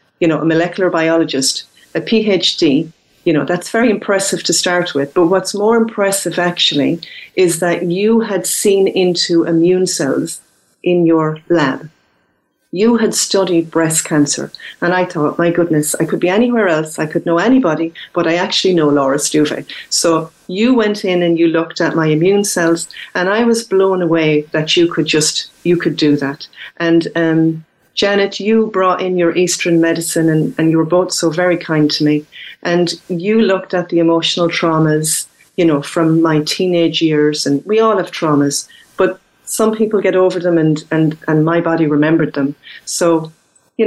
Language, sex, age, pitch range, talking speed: English, female, 40-59, 155-180 Hz, 180 wpm